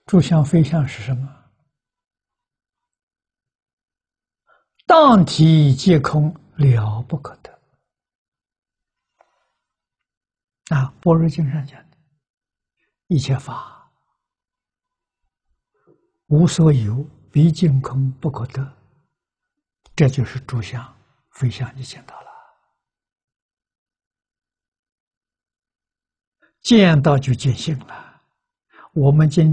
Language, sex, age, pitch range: Chinese, male, 60-79, 135-170 Hz